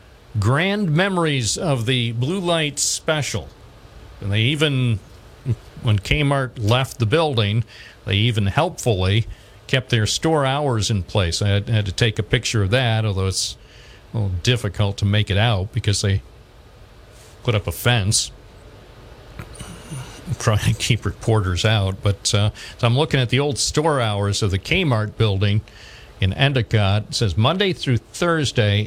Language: English